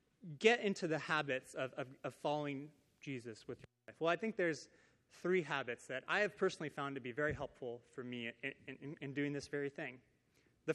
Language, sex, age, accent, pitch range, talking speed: English, male, 30-49, American, 140-180 Hz, 205 wpm